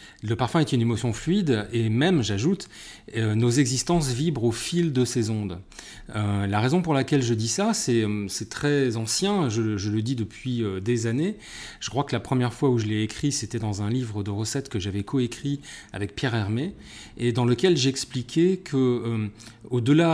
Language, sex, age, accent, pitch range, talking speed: French, male, 30-49, French, 110-140 Hz, 195 wpm